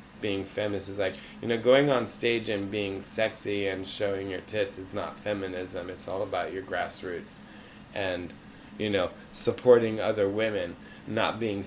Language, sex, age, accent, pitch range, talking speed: English, male, 20-39, American, 95-125 Hz, 165 wpm